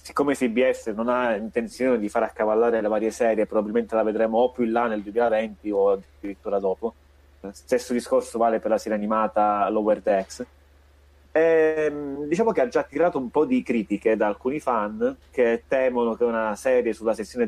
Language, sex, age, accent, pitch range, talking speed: Italian, male, 30-49, native, 100-120 Hz, 180 wpm